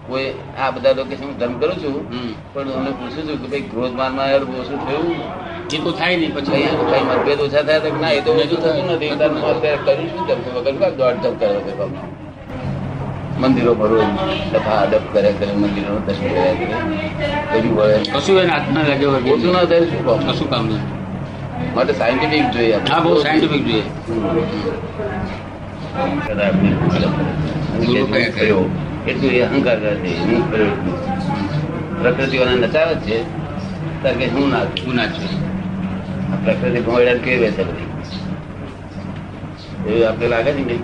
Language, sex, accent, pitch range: Gujarati, male, native, 120-150 Hz